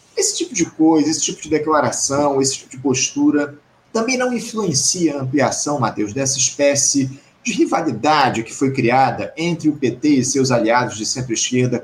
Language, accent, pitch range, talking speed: Portuguese, Brazilian, 135-185 Hz, 165 wpm